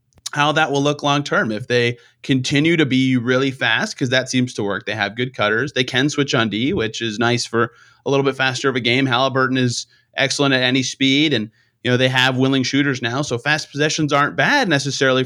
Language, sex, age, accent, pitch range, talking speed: English, male, 30-49, American, 120-145 Hz, 225 wpm